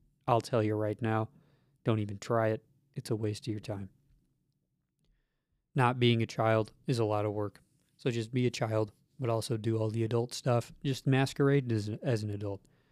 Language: English